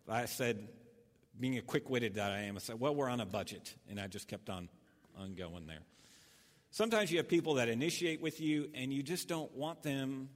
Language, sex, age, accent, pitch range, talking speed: English, male, 50-69, American, 110-140 Hz, 215 wpm